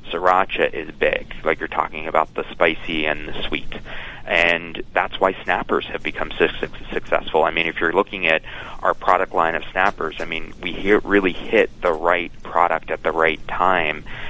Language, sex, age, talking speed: English, male, 30-49, 175 wpm